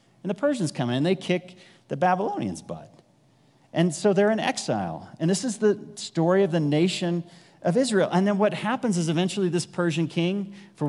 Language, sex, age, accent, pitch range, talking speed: English, male, 40-59, American, 140-180 Hz, 200 wpm